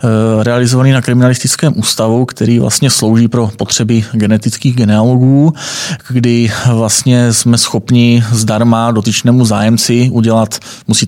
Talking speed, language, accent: 110 wpm, Czech, native